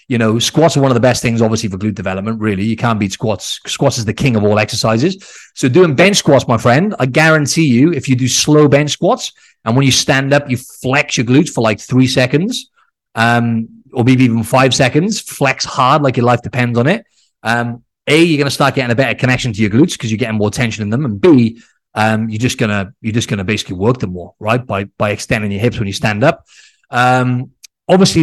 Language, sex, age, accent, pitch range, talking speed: English, male, 30-49, British, 110-140 Hz, 235 wpm